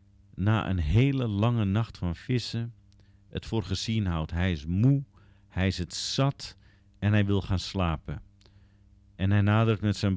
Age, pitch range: 50-69, 95-110 Hz